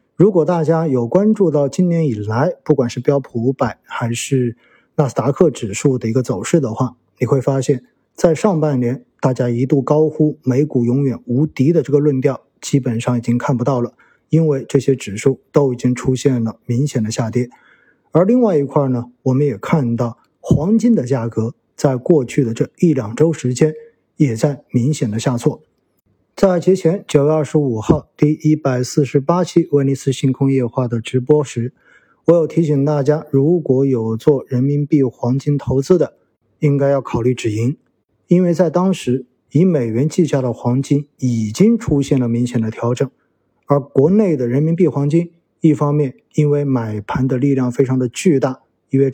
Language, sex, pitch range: Chinese, male, 125-155 Hz